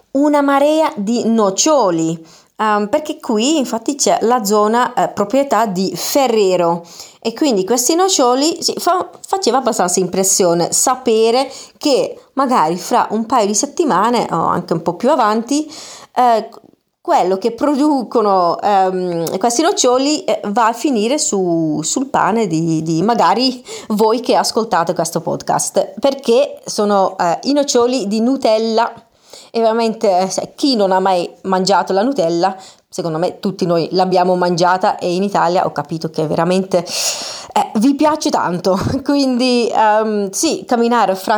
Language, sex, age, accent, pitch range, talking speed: Italian, female, 30-49, native, 190-270 Hz, 135 wpm